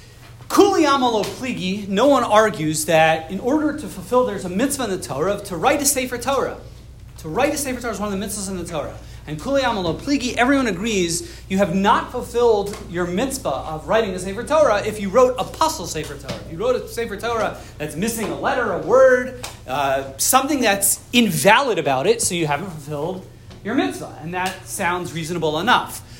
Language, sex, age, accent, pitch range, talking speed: English, male, 40-59, American, 170-255 Hz, 195 wpm